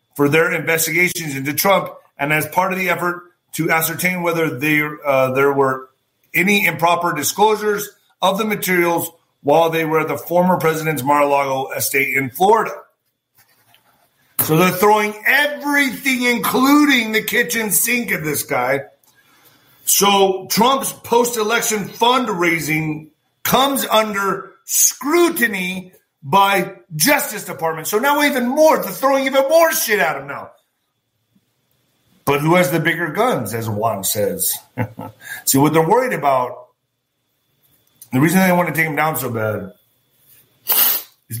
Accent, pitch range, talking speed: American, 140-200 Hz, 135 wpm